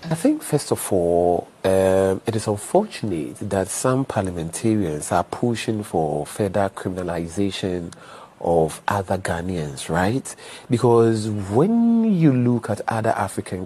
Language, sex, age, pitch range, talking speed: English, male, 40-59, 105-145 Hz, 125 wpm